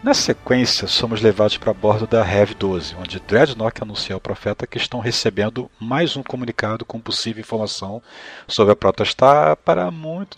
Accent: Brazilian